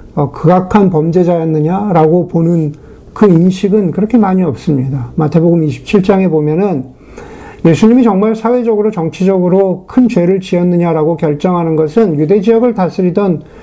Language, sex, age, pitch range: Korean, male, 50-69, 160-210 Hz